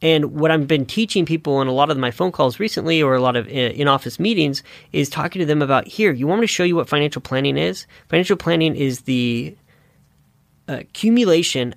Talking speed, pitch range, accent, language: 210 wpm, 130-165 Hz, American, English